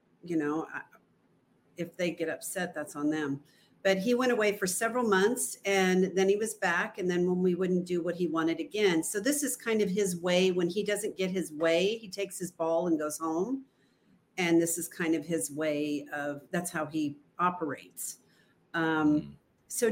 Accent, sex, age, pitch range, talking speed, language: American, female, 50-69, 165-205 Hz, 195 wpm, English